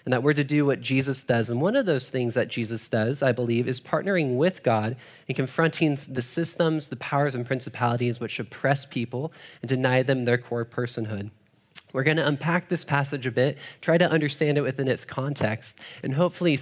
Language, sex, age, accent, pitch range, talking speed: English, male, 10-29, American, 120-150 Hz, 200 wpm